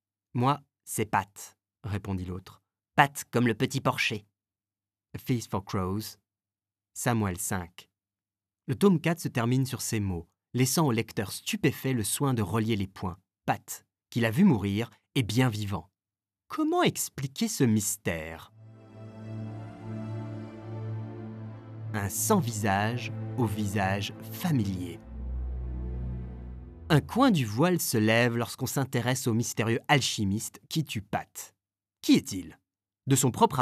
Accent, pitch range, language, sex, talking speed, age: French, 100-130 Hz, French, male, 125 wpm, 30-49